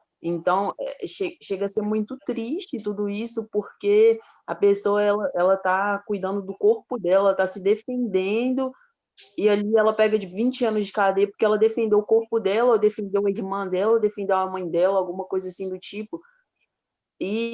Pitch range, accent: 175-215 Hz, Brazilian